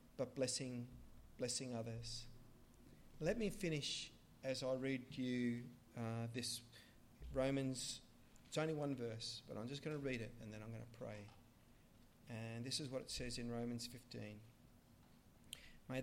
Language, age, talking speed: English, 40-59, 155 wpm